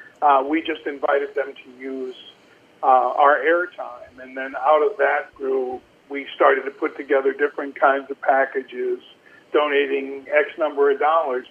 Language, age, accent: English, 50-69, American